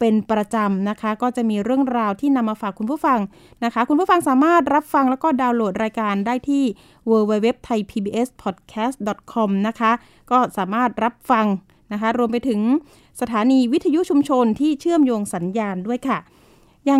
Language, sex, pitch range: Thai, female, 220-275 Hz